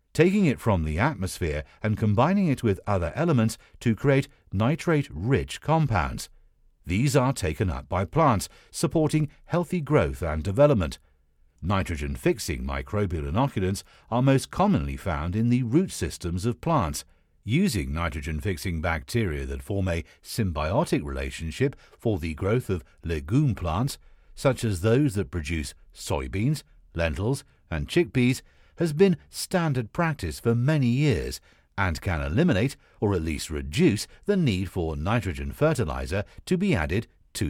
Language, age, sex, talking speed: English, 50-69, male, 135 wpm